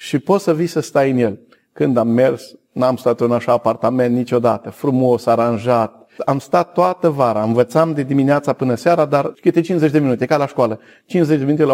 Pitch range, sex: 125-160 Hz, male